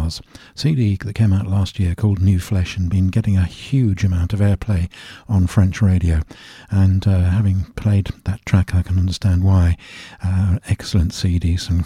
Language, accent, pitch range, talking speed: English, British, 90-110 Hz, 170 wpm